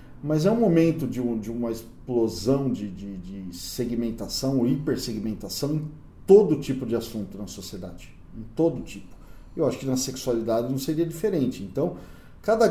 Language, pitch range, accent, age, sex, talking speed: Portuguese, 105-145 Hz, Brazilian, 40-59, male, 160 wpm